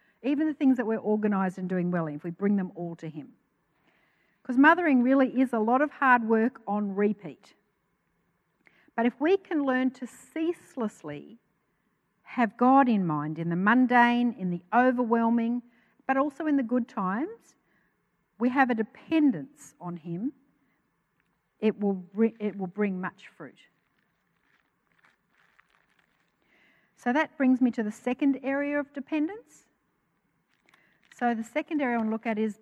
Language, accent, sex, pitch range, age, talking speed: English, Australian, female, 195-255 Hz, 60-79, 145 wpm